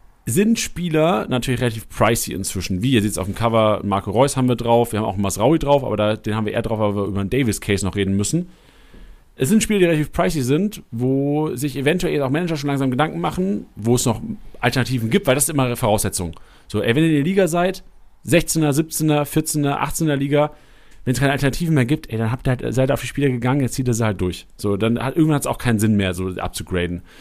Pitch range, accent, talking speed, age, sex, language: 115-170 Hz, German, 250 wpm, 40-59, male, German